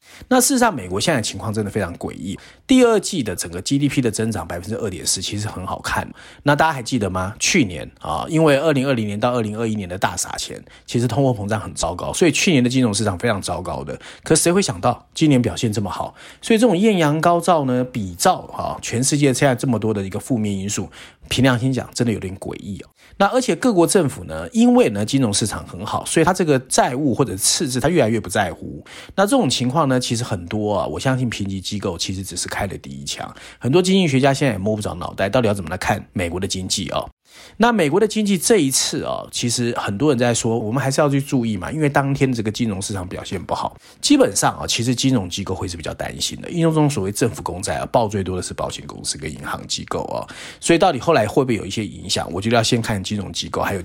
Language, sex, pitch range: Chinese, male, 95-140 Hz